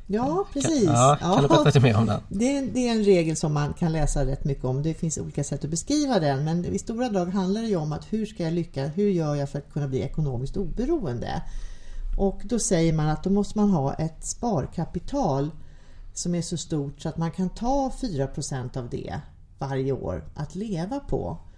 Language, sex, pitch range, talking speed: Swedish, female, 140-205 Hz, 210 wpm